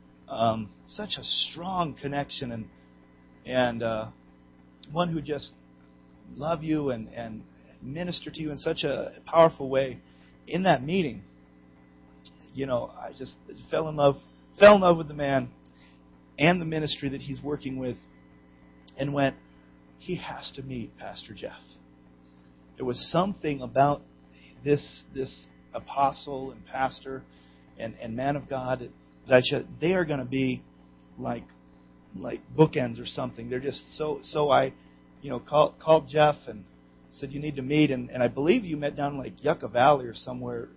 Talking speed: 165 wpm